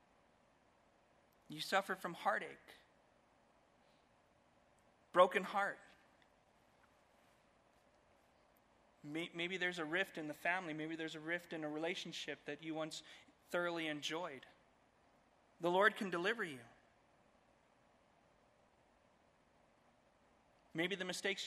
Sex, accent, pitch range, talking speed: male, American, 170-215 Hz, 90 wpm